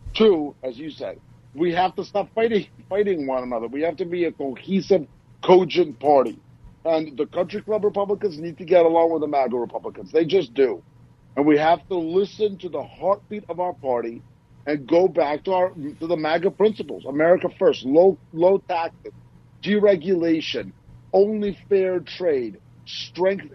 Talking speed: 170 wpm